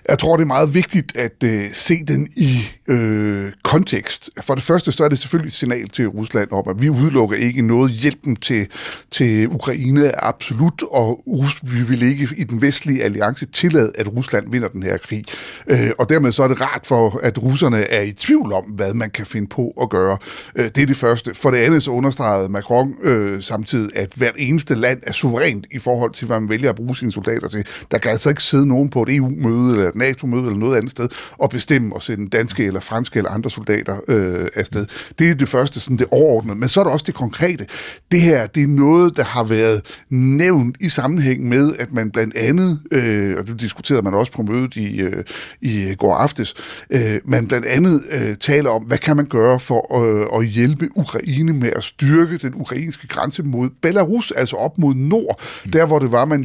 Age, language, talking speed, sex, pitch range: 60-79, Danish, 220 wpm, male, 110-145 Hz